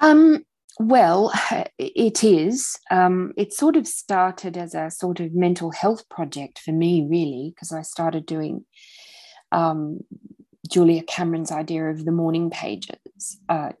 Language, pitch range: English, 165-195 Hz